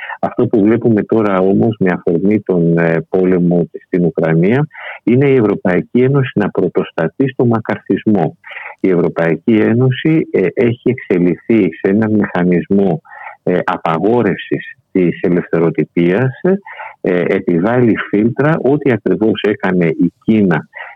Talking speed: 105 wpm